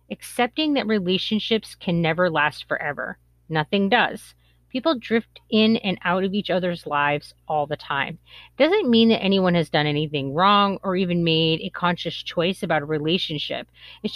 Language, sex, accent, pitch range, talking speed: English, female, American, 155-225 Hz, 165 wpm